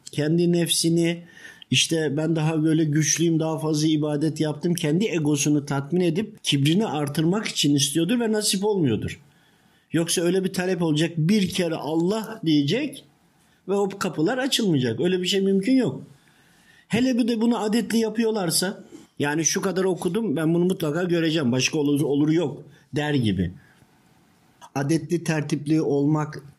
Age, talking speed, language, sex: 50-69, 140 wpm, Turkish, male